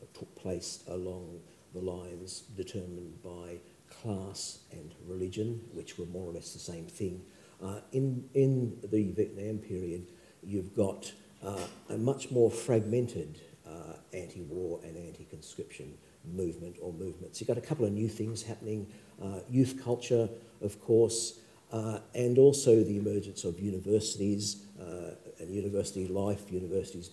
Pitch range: 90-115 Hz